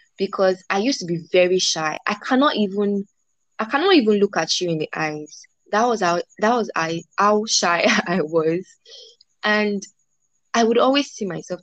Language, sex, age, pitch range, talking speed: English, female, 20-39, 170-240 Hz, 180 wpm